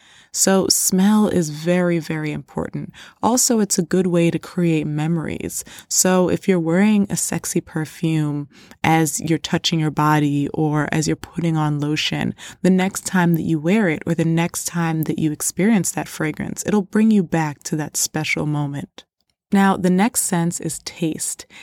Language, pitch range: English, 160-200 Hz